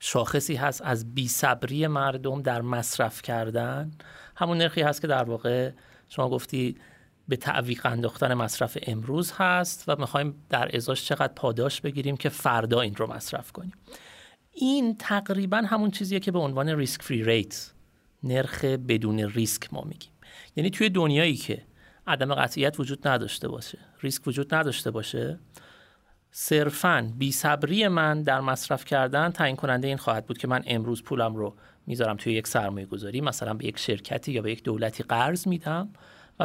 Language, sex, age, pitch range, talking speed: Persian, male, 30-49, 120-165 Hz, 160 wpm